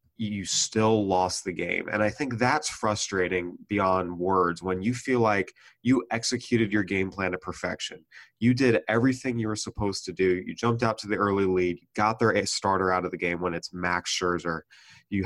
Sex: male